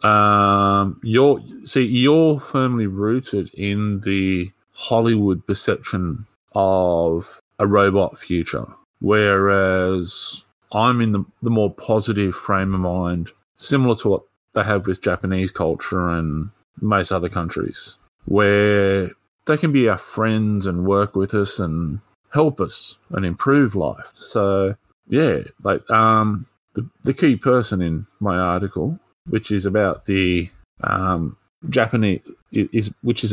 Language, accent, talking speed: English, Australian, 130 wpm